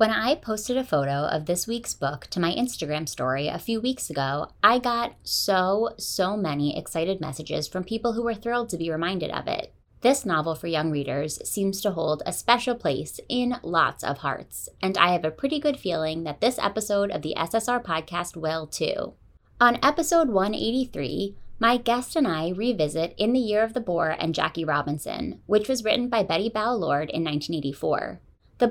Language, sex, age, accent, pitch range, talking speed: English, female, 20-39, American, 155-235 Hz, 190 wpm